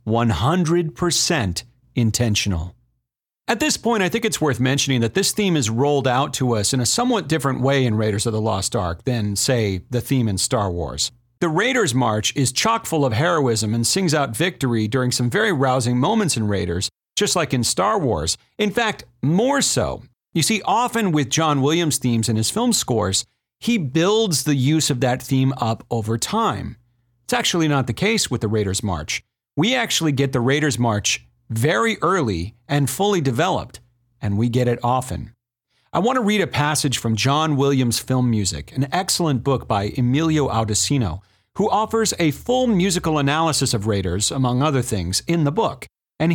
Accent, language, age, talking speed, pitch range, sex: American, English, 40-59, 185 wpm, 115-160 Hz, male